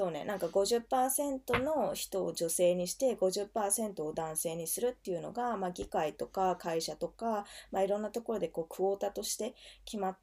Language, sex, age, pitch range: Japanese, female, 20-39, 175-240 Hz